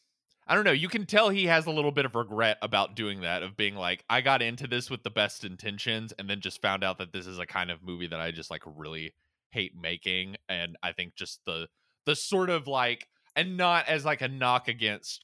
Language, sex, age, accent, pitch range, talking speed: English, male, 20-39, American, 95-125 Hz, 245 wpm